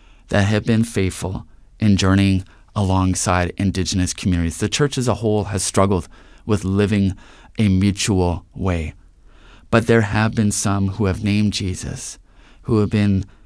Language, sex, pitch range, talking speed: English, male, 90-110 Hz, 145 wpm